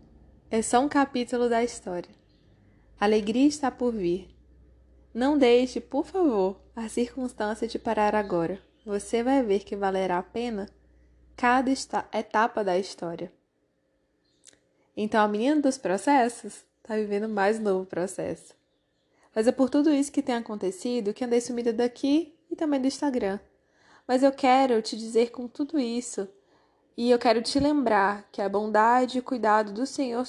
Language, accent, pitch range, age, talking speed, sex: Portuguese, Brazilian, 205-270 Hz, 20-39, 155 wpm, female